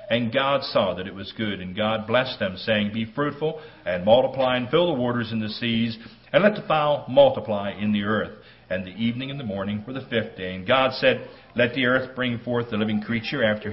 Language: English